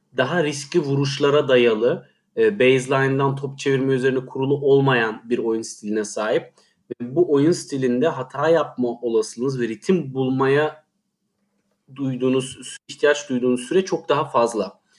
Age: 40-59